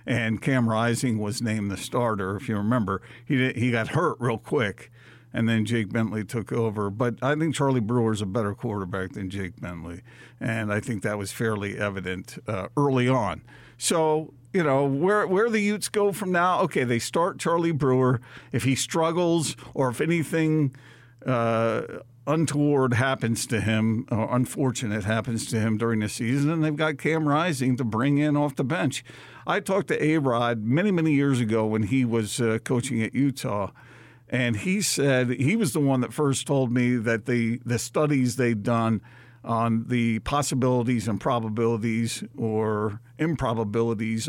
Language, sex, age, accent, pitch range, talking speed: English, male, 50-69, American, 115-140 Hz, 175 wpm